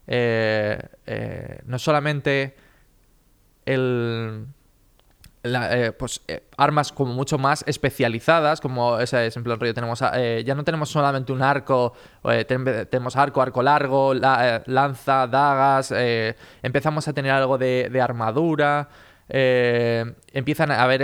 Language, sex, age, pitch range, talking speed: Spanish, male, 20-39, 125-145 Hz, 135 wpm